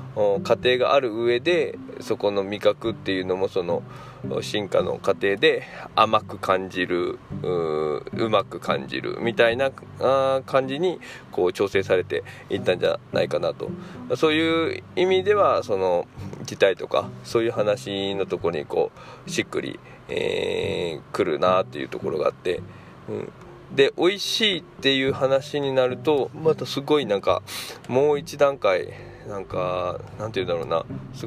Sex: male